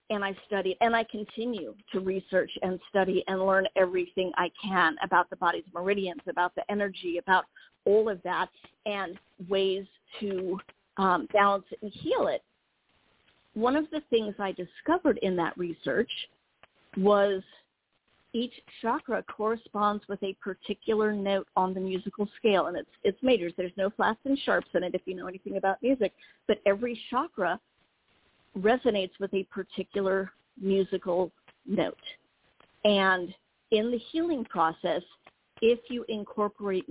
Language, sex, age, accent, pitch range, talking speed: English, female, 40-59, American, 190-220 Hz, 145 wpm